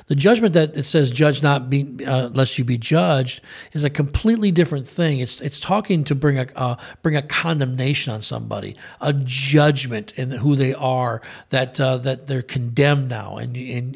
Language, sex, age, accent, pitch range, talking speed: English, male, 40-59, American, 130-160 Hz, 190 wpm